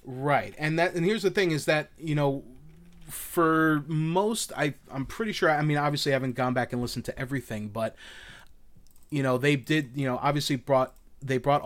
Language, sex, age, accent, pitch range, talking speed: English, male, 30-49, American, 120-150 Hz, 200 wpm